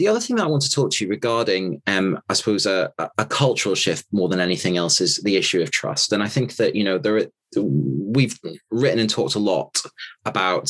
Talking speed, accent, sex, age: 235 wpm, British, male, 20-39